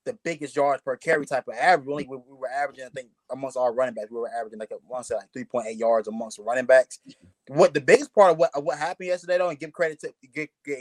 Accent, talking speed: American, 265 wpm